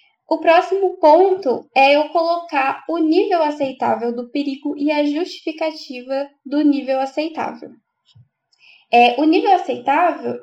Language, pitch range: Portuguese, 250-315 Hz